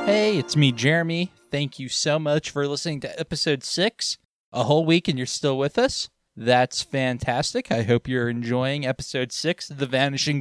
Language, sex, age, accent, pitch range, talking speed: English, male, 20-39, American, 130-165 Hz, 185 wpm